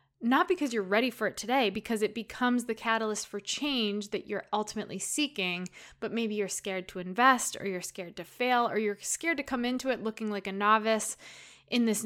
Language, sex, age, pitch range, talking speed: English, female, 20-39, 195-235 Hz, 210 wpm